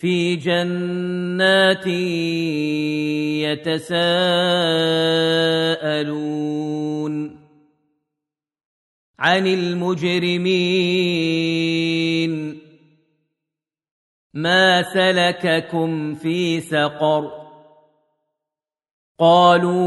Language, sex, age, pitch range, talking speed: Arabic, male, 40-59, 150-180 Hz, 30 wpm